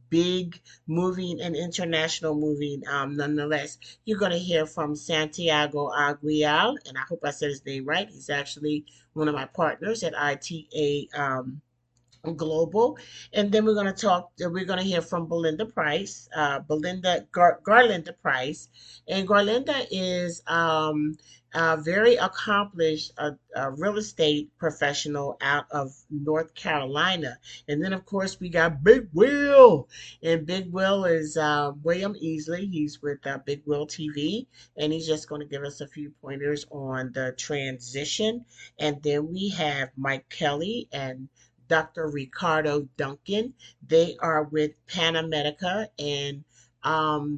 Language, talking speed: English, 150 wpm